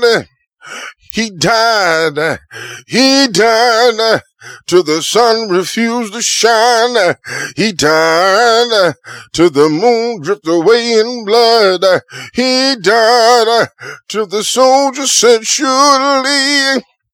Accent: American